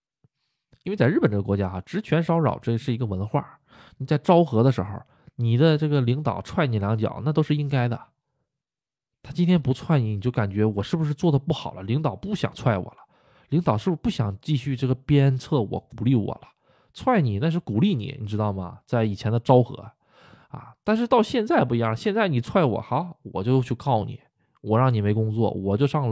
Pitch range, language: 110-150 Hz, Chinese